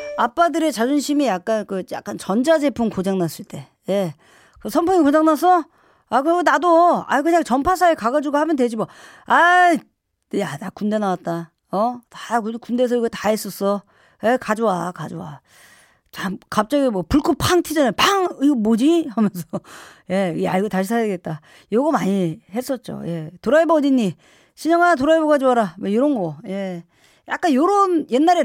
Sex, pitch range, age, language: female, 190-295 Hz, 40-59, Korean